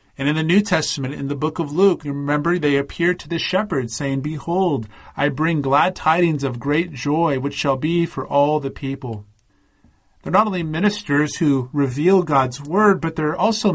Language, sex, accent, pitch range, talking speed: English, male, American, 135-180 Hz, 190 wpm